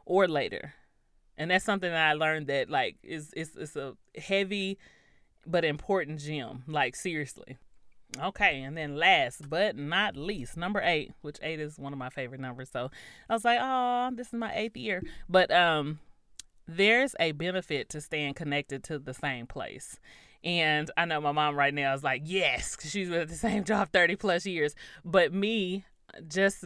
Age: 30-49